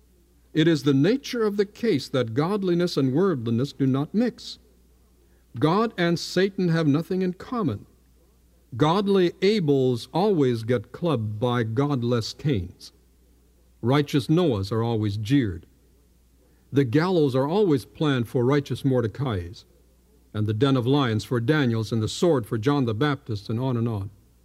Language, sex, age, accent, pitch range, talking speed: English, male, 60-79, American, 95-155 Hz, 145 wpm